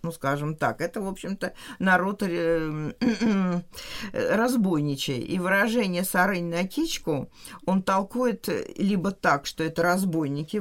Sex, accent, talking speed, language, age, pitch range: female, native, 115 wpm, Russian, 50-69, 160-210 Hz